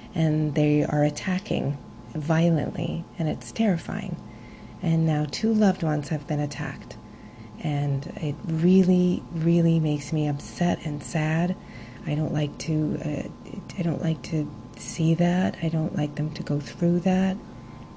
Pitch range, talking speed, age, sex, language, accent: 150-170 Hz, 145 wpm, 30-49, female, English, American